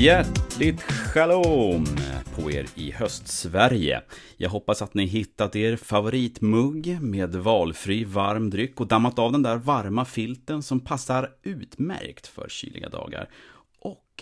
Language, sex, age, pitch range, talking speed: Swedish, male, 30-49, 90-125 Hz, 135 wpm